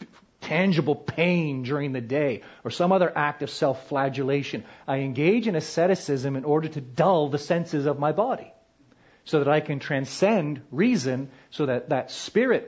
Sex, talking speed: male, 160 wpm